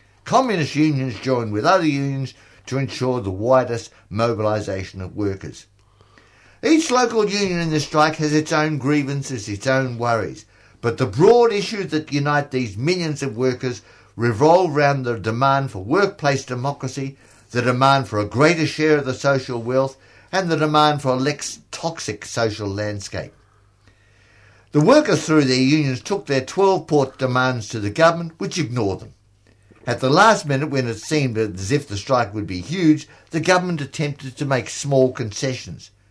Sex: male